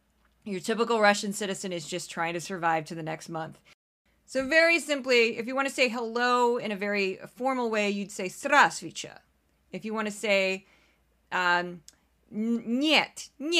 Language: English